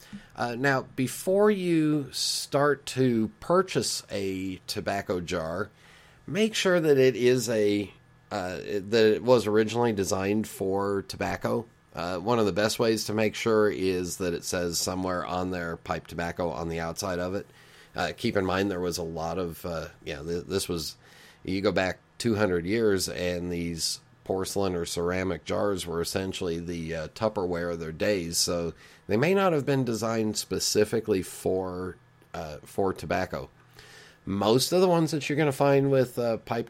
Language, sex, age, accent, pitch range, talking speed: English, male, 40-59, American, 90-120 Hz, 170 wpm